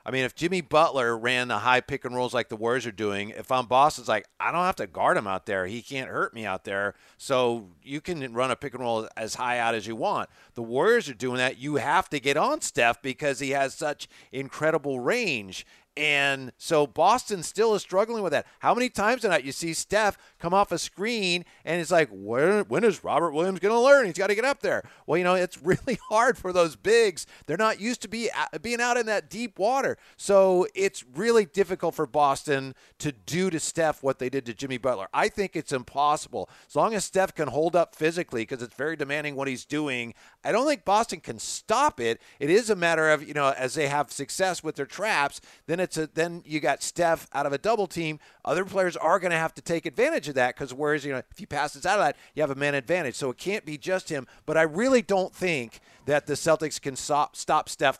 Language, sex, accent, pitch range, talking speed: English, male, American, 130-185 Hz, 240 wpm